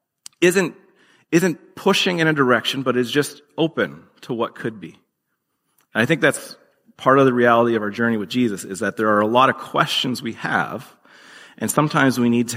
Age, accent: 30-49, American